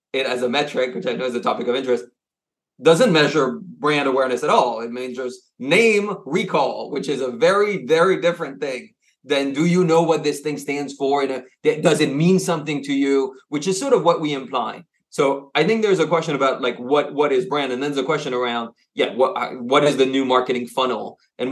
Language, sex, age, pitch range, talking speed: English, male, 30-49, 125-165 Hz, 225 wpm